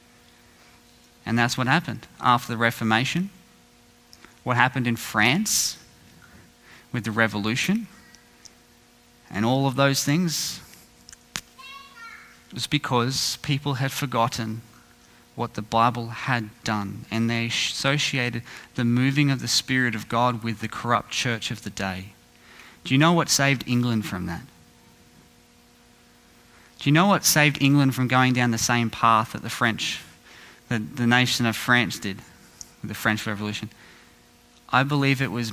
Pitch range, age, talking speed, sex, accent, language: 110-135 Hz, 20-39, 135 wpm, male, Australian, English